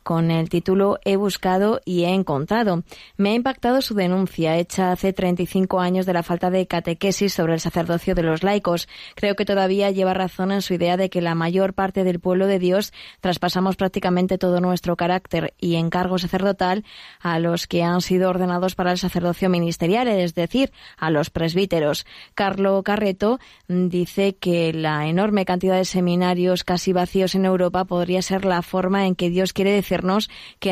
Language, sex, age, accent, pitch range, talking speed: Spanish, female, 20-39, Spanish, 175-195 Hz, 180 wpm